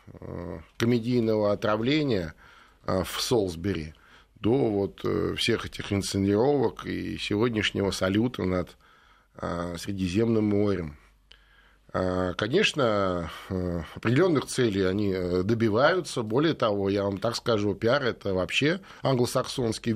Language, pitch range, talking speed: Russian, 100-135 Hz, 90 wpm